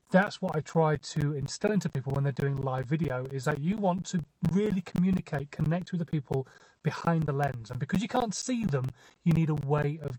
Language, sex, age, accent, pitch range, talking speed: English, male, 30-49, British, 145-180 Hz, 225 wpm